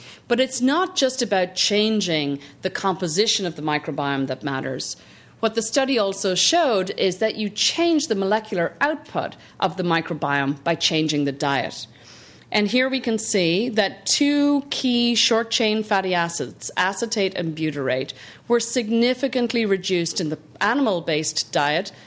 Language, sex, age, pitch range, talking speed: English, female, 40-59, 165-225 Hz, 145 wpm